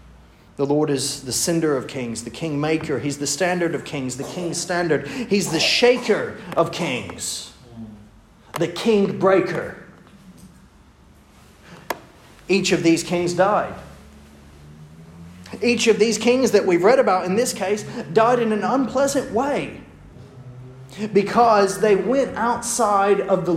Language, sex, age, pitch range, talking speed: English, male, 40-59, 125-205 Hz, 135 wpm